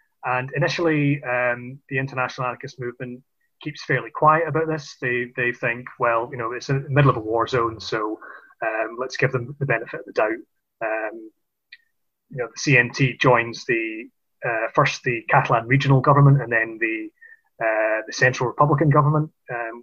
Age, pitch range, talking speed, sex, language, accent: 30-49, 120-155 Hz, 175 wpm, male, English, British